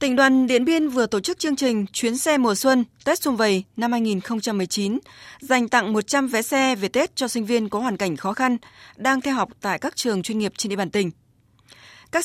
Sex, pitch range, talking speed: female, 200-260 Hz, 225 wpm